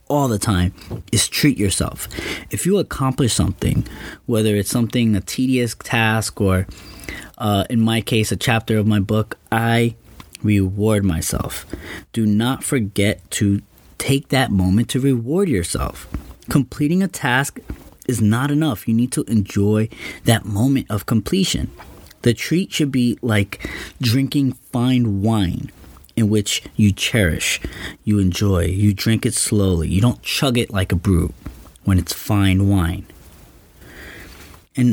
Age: 20-39